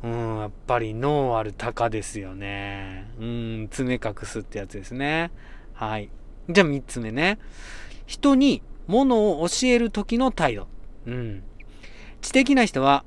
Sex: male